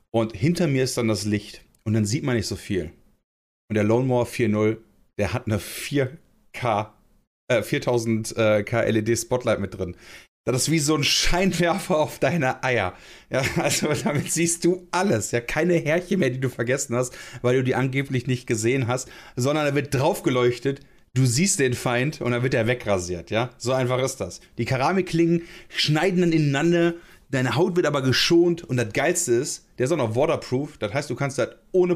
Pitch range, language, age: 115-160 Hz, German, 30-49